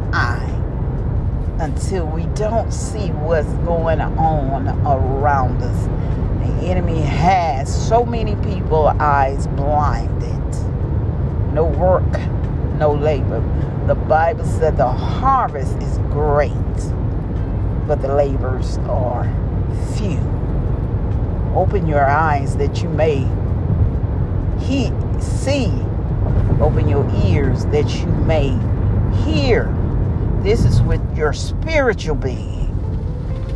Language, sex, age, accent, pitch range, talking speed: English, female, 40-59, American, 90-120 Hz, 95 wpm